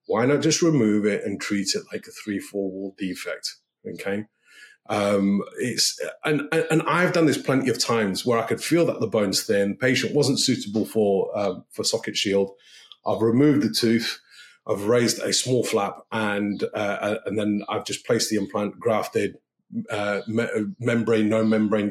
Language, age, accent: English, 30-49, British